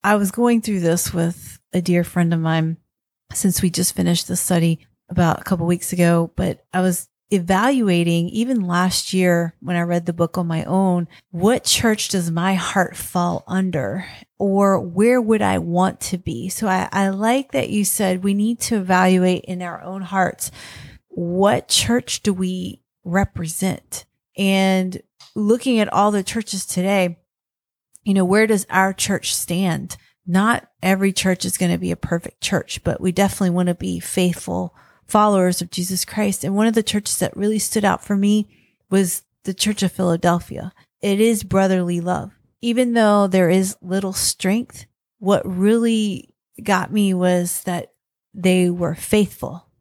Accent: American